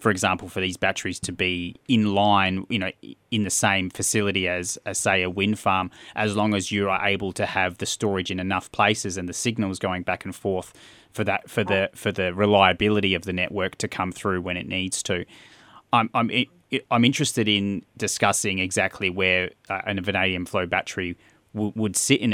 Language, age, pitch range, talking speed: English, 30-49, 95-105 Hz, 200 wpm